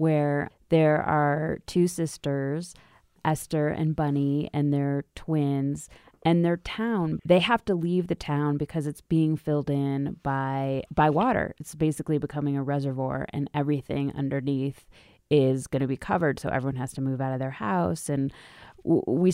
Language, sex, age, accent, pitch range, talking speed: English, female, 20-39, American, 135-155 Hz, 165 wpm